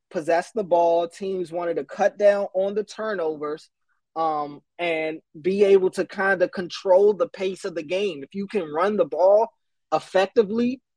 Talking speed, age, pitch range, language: 170 wpm, 20-39, 165-205 Hz, English